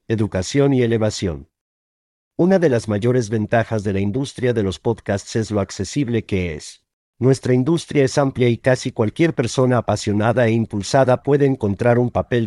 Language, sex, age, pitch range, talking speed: Spanish, male, 50-69, 105-130 Hz, 165 wpm